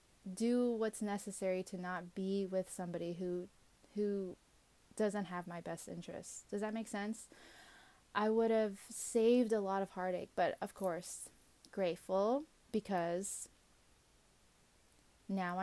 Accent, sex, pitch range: American, female, 180-210 Hz